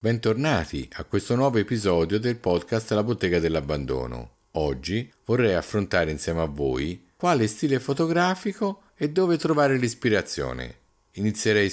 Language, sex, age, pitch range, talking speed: Italian, male, 50-69, 75-120 Hz, 125 wpm